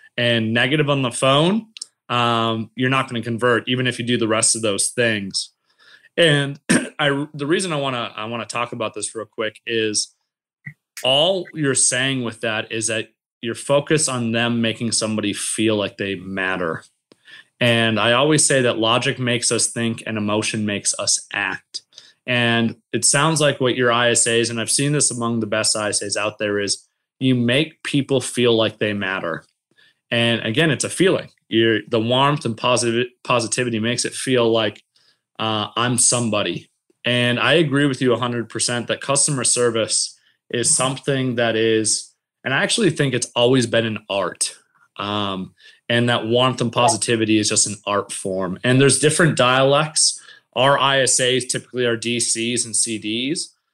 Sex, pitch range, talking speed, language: male, 110-130 Hz, 170 wpm, English